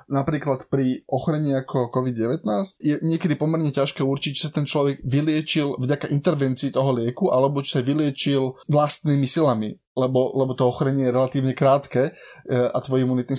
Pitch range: 125-150 Hz